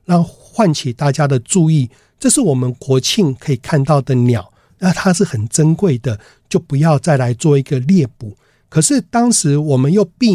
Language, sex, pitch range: Chinese, male, 125-185 Hz